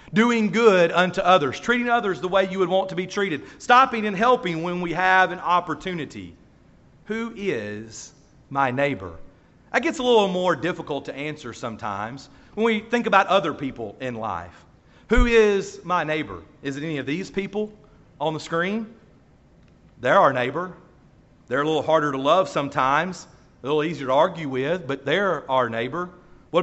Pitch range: 145-195 Hz